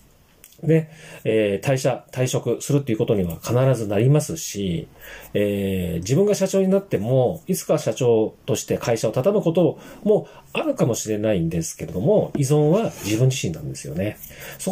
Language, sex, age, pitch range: Japanese, male, 40-59, 105-160 Hz